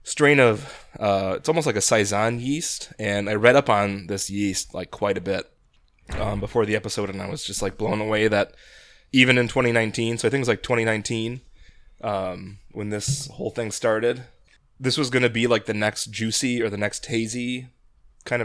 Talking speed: 200 wpm